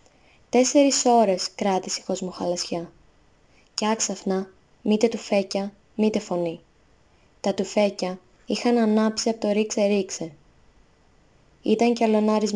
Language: Greek